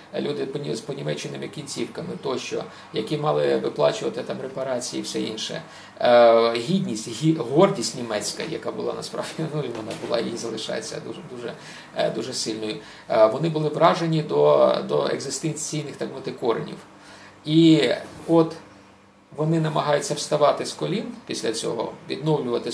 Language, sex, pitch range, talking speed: Ukrainian, male, 110-160 Hz, 125 wpm